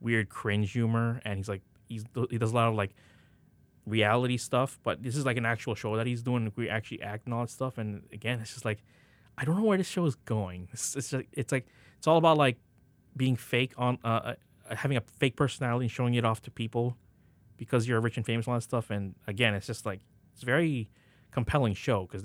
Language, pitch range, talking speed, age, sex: English, 110-130 Hz, 245 wpm, 20-39, male